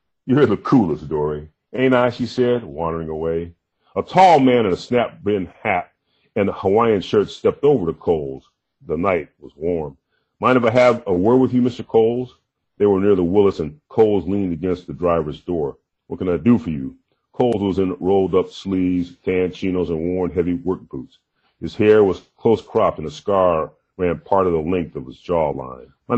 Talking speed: 195 wpm